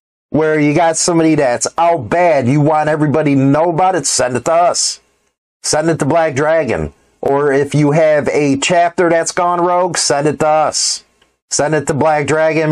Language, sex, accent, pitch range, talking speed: English, male, American, 135-165 Hz, 195 wpm